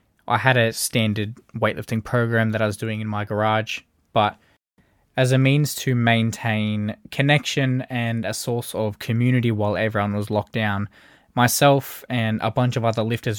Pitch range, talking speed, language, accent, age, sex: 110-135 Hz, 165 wpm, English, Australian, 20-39, male